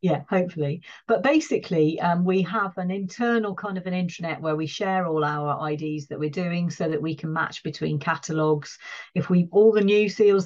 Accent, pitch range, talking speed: British, 150-185 Hz, 200 wpm